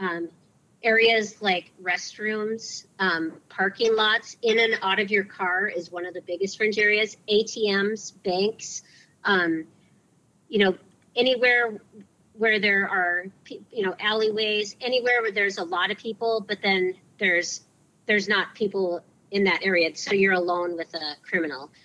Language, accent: English, American